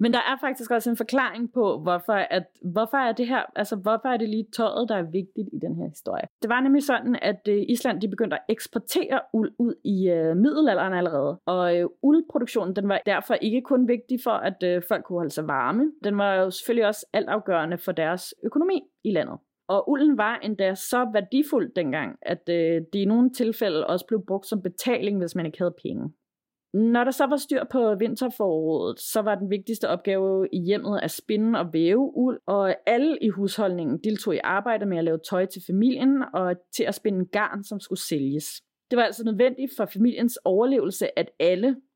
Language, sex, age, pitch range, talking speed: Danish, female, 30-49, 185-245 Hz, 205 wpm